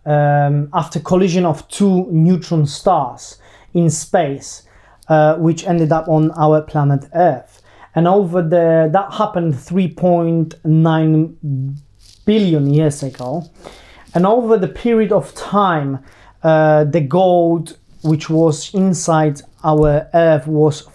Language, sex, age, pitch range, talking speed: English, male, 30-49, 145-170 Hz, 115 wpm